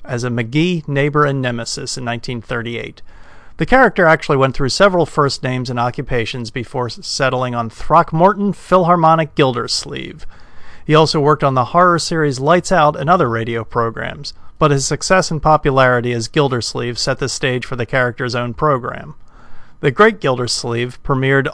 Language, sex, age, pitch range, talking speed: English, male, 40-59, 125-155 Hz, 155 wpm